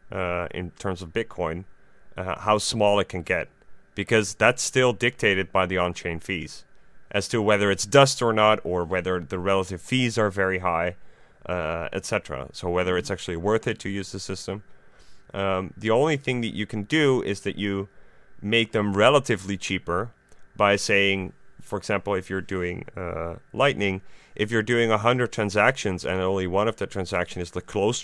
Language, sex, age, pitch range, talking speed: English, male, 30-49, 95-110 Hz, 180 wpm